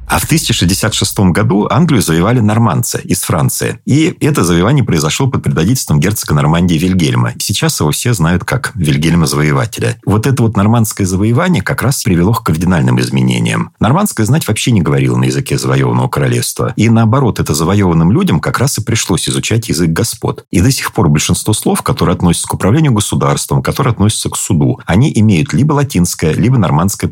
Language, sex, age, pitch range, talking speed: Russian, male, 40-59, 85-125 Hz, 170 wpm